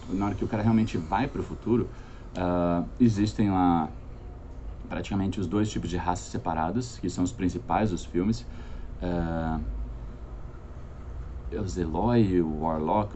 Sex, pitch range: male, 85-120 Hz